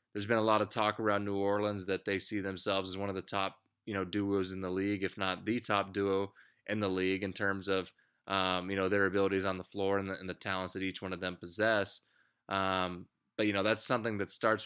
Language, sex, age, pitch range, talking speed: English, male, 20-39, 95-110 Hz, 250 wpm